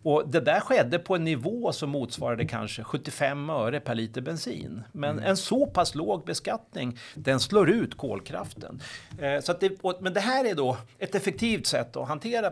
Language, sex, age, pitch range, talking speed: Swedish, male, 40-59, 120-165 Hz, 180 wpm